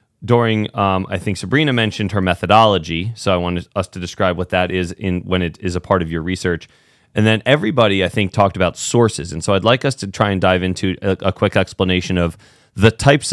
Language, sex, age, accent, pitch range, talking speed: English, male, 30-49, American, 90-110 Hz, 230 wpm